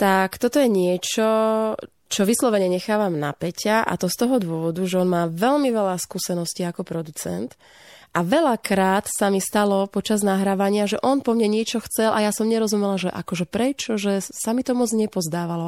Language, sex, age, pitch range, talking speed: Slovak, female, 20-39, 180-215 Hz, 185 wpm